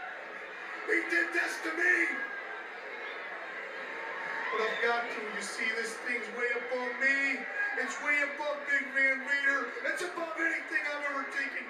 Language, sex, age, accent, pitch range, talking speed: English, male, 40-59, American, 255-325 Hz, 145 wpm